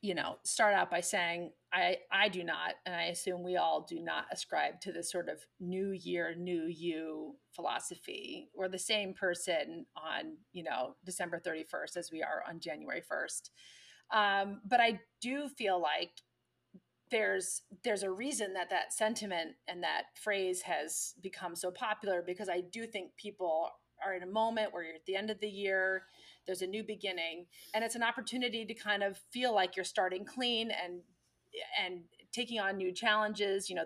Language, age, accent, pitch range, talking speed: English, 30-49, American, 180-220 Hz, 185 wpm